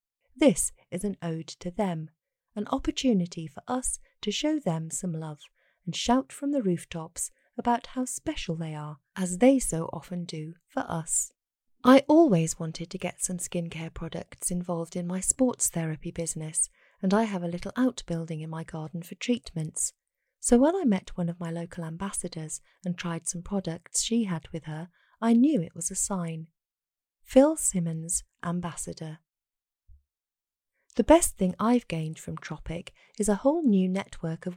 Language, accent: English, British